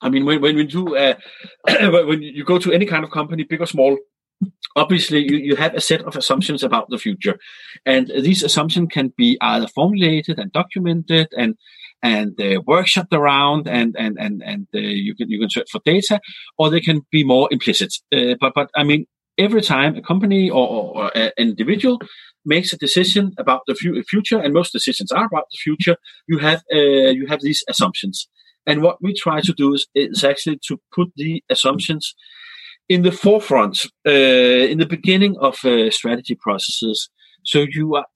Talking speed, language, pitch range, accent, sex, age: 195 wpm, English, 140-190 Hz, Danish, male, 40-59